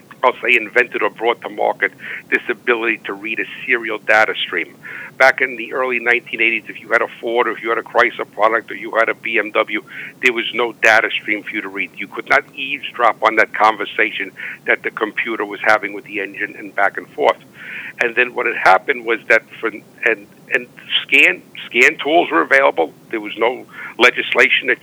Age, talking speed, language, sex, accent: 50-69, 205 wpm, English, male, American